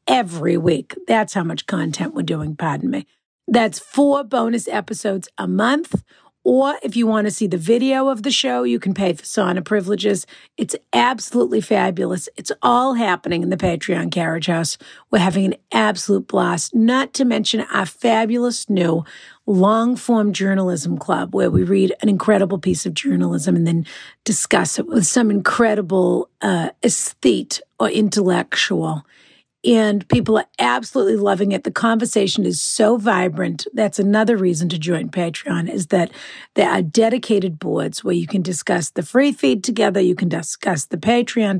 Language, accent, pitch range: English, American, 180-230 Hz